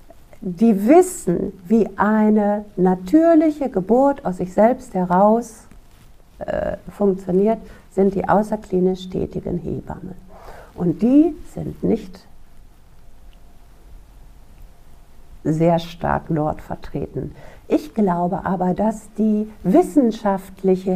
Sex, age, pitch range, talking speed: female, 60-79, 185-235 Hz, 90 wpm